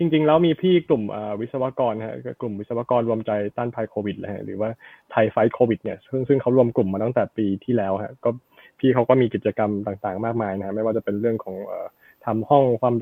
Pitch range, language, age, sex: 110-140 Hz, Thai, 20-39, male